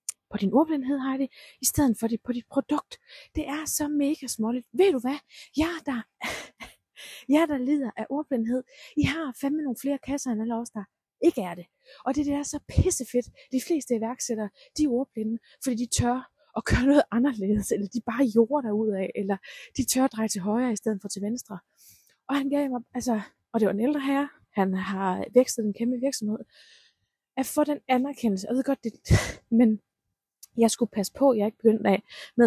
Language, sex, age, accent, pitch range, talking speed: Danish, female, 20-39, native, 220-280 Hz, 210 wpm